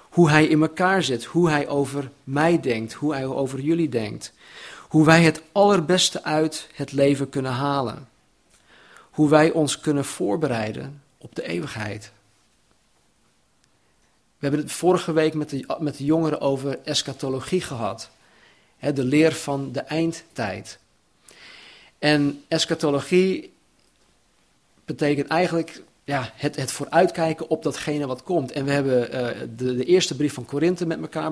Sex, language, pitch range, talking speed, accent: male, Dutch, 135-165 Hz, 140 wpm, Dutch